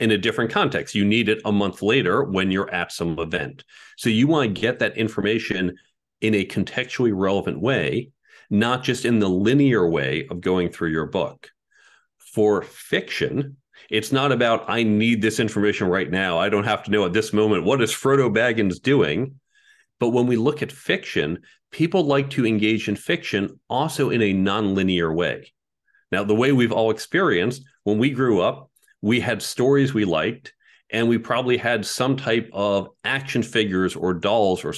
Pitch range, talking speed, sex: 100-125 Hz, 185 wpm, male